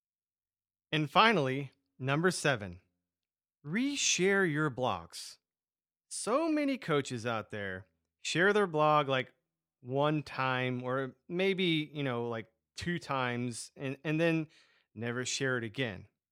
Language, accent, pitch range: English, American, 110-160 Hz